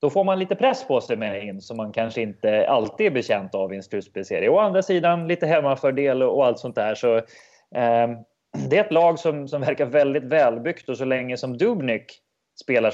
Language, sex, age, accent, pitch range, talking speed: English, male, 20-39, Swedish, 105-135 Hz, 215 wpm